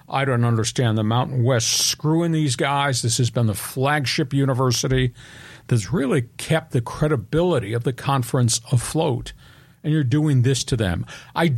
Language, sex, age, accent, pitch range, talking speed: English, male, 50-69, American, 120-145 Hz, 160 wpm